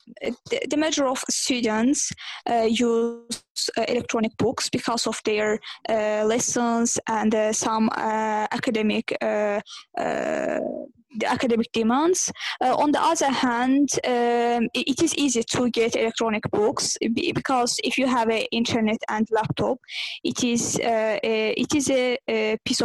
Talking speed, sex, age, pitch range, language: 140 wpm, female, 10-29, 225-255 Hz, English